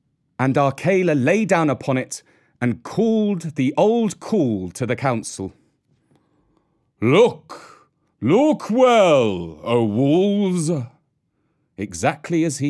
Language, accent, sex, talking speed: English, British, male, 105 wpm